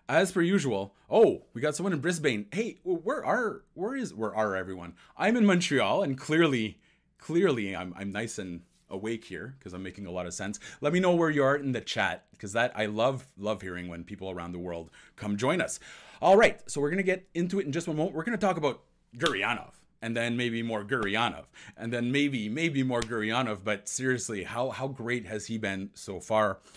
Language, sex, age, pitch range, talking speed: English, male, 30-49, 105-145 Hz, 215 wpm